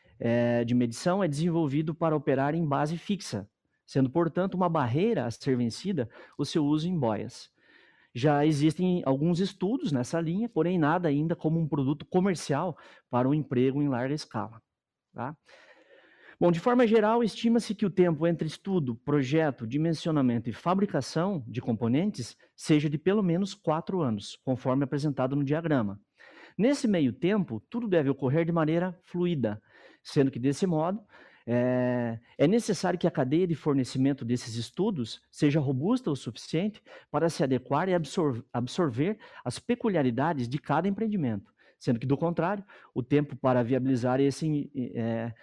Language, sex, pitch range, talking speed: Portuguese, male, 125-175 Hz, 155 wpm